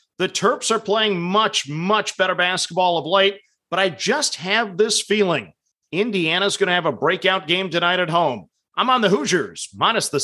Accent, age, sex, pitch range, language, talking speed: American, 40-59, male, 180-225 Hz, English, 190 wpm